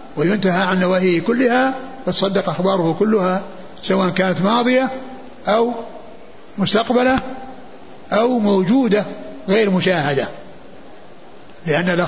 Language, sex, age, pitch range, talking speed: Arabic, male, 60-79, 175-215 Hz, 85 wpm